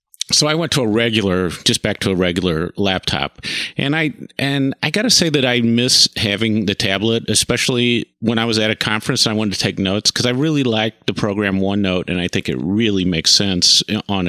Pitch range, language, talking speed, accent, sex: 100-130 Hz, English, 225 wpm, American, male